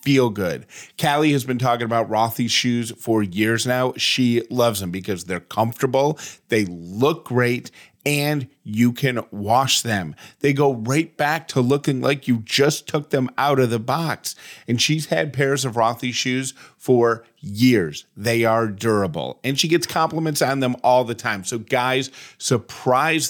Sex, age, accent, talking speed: male, 40-59, American, 165 wpm